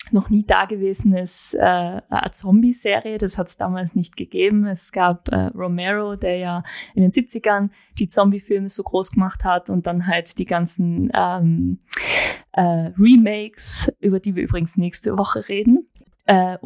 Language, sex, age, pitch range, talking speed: German, female, 20-39, 185-225 Hz, 150 wpm